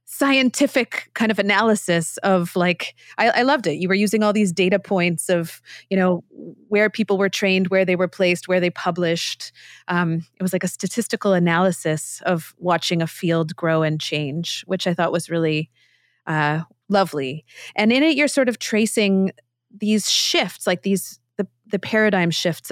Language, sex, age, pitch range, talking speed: English, female, 30-49, 165-195 Hz, 175 wpm